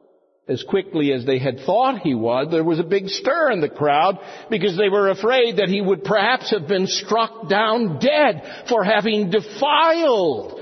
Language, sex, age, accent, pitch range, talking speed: English, male, 50-69, American, 175-260 Hz, 180 wpm